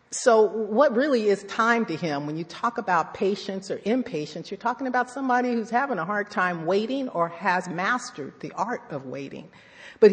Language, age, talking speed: English, 50-69, 190 wpm